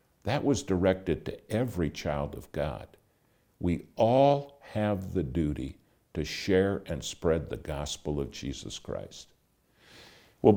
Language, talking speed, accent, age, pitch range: English, 130 wpm, American, 60-79, 75-105 Hz